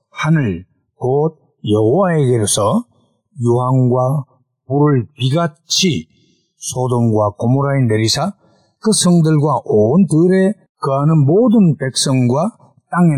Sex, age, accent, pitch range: male, 50-69, native, 125-170 Hz